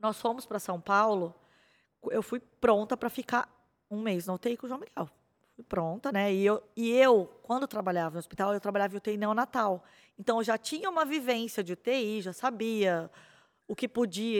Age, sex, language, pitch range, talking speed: 20-39, female, Portuguese, 195-245 Hz, 195 wpm